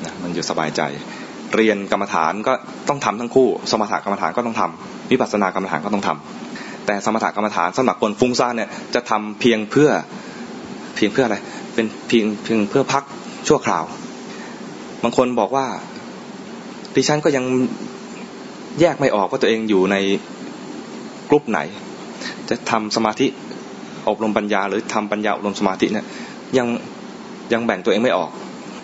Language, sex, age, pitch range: English, male, 20-39, 100-120 Hz